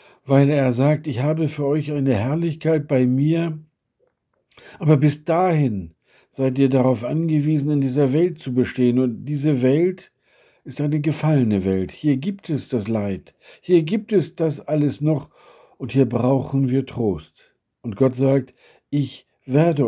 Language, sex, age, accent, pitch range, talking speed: German, male, 60-79, German, 130-165 Hz, 155 wpm